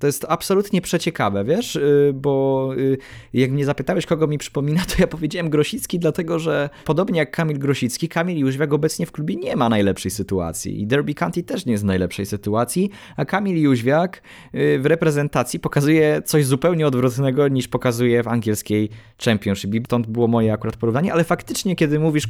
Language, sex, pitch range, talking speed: Polish, male, 115-155 Hz, 170 wpm